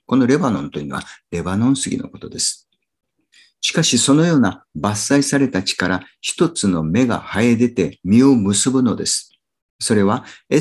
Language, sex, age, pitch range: Japanese, male, 50-69, 100-135 Hz